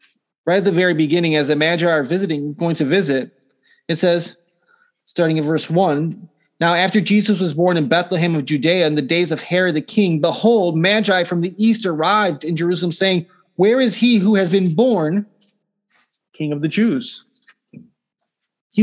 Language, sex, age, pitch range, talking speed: English, male, 30-49, 160-210 Hz, 180 wpm